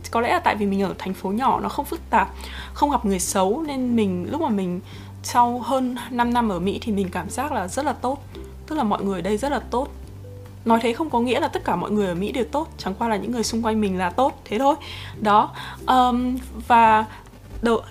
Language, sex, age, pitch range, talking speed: Vietnamese, female, 20-39, 195-245 Hz, 255 wpm